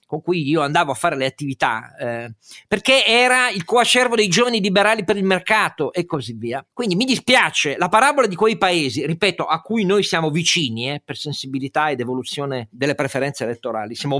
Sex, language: male, Italian